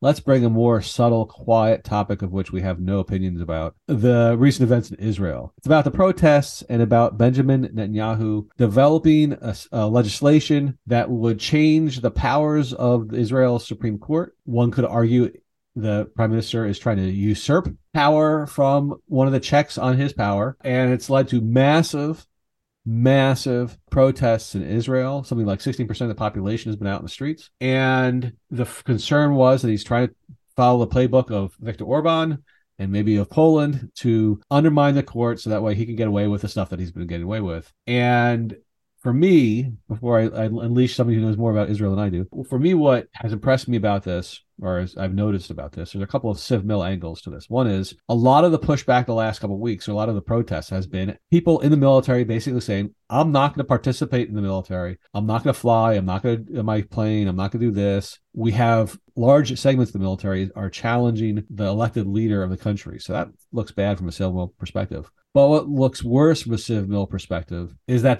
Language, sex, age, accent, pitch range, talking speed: English, male, 40-59, American, 100-130 Hz, 210 wpm